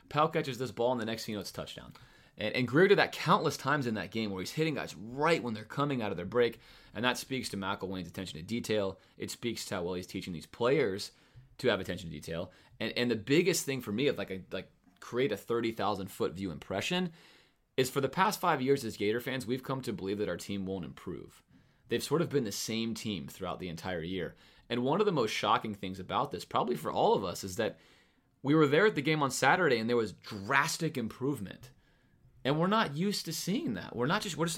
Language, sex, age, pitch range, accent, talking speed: English, male, 30-49, 95-140 Hz, American, 245 wpm